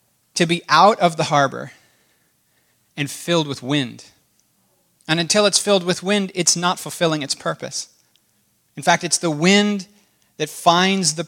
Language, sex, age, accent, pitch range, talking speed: English, male, 30-49, American, 145-185 Hz, 155 wpm